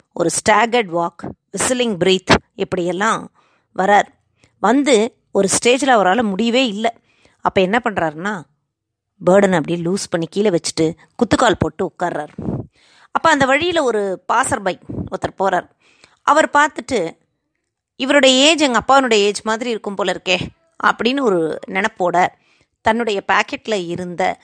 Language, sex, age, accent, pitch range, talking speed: Tamil, female, 20-39, native, 170-235 Hz, 125 wpm